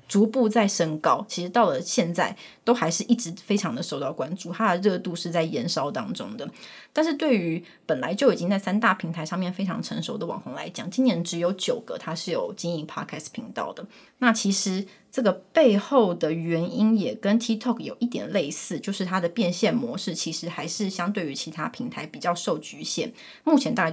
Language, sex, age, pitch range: Chinese, female, 20-39, 170-230 Hz